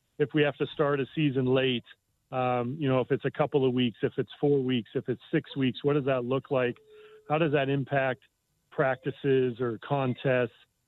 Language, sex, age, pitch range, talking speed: English, male, 40-59, 130-155 Hz, 205 wpm